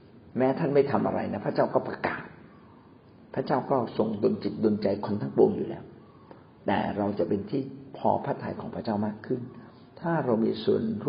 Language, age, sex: Thai, 60-79, male